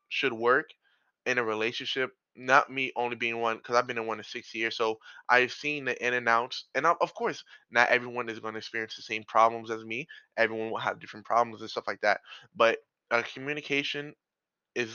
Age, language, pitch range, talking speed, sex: 20-39, English, 110-125 Hz, 210 wpm, male